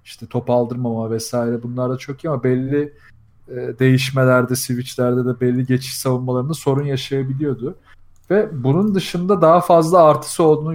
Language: Turkish